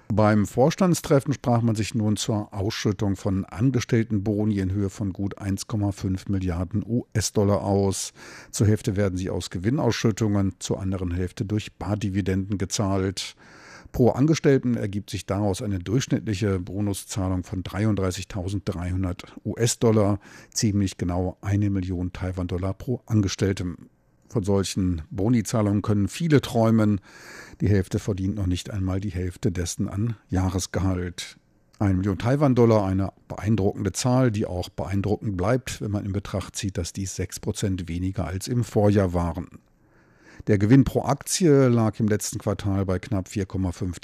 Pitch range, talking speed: 95-110 Hz, 135 wpm